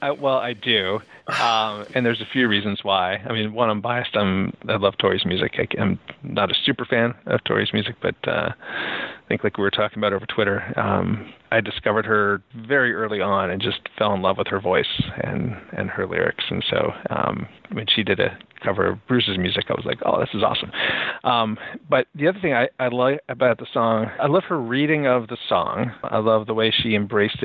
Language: English